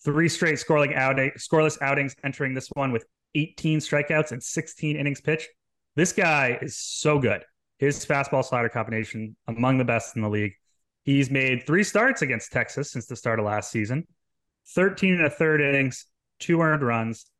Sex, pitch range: male, 115-145 Hz